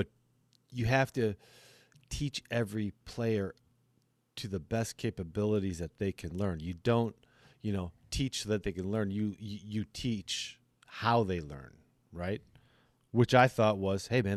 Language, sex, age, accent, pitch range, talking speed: English, male, 40-59, American, 90-120 Hz, 160 wpm